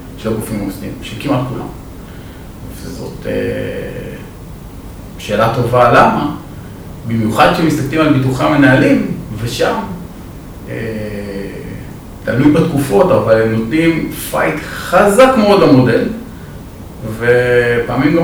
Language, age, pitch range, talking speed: Hebrew, 40-59, 105-155 Hz, 90 wpm